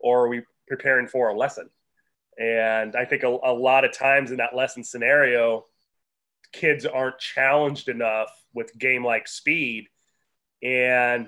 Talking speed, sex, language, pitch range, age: 145 wpm, male, English, 120-140 Hz, 30-49